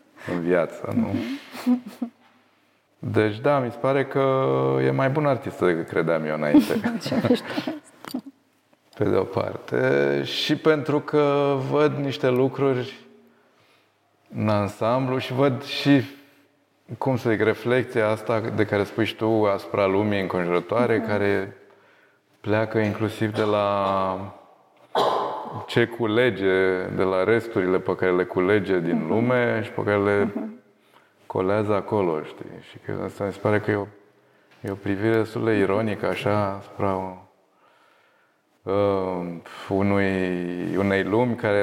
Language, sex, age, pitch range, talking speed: Romanian, male, 20-39, 95-135 Hz, 125 wpm